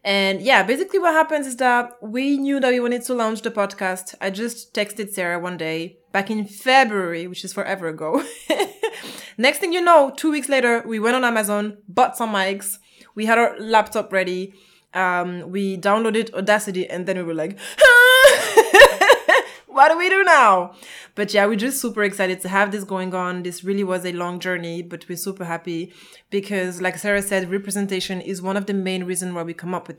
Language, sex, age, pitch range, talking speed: English, female, 20-39, 180-225 Hz, 200 wpm